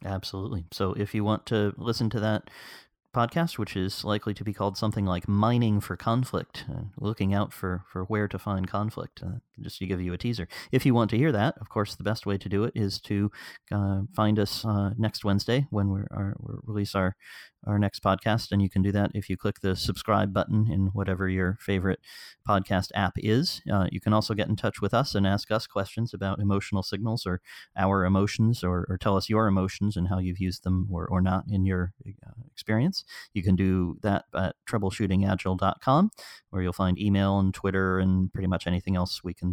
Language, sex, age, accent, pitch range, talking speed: English, male, 30-49, American, 95-110 Hz, 210 wpm